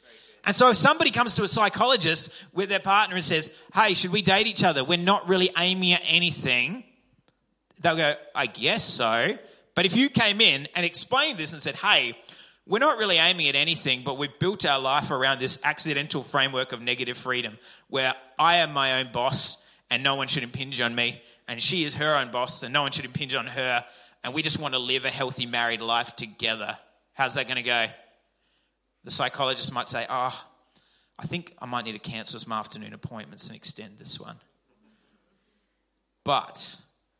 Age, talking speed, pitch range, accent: 30-49, 200 wpm, 120-175 Hz, Australian